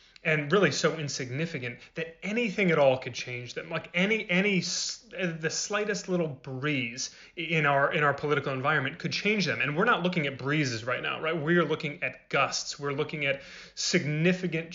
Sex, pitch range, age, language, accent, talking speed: male, 135-165 Hz, 30-49, English, American, 185 wpm